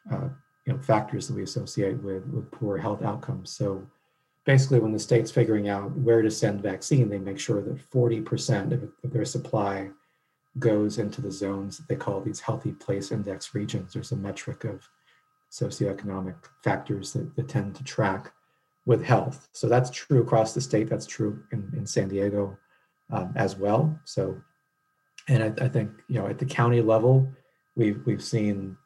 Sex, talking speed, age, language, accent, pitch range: male, 180 wpm, 40-59, English, American, 100-125 Hz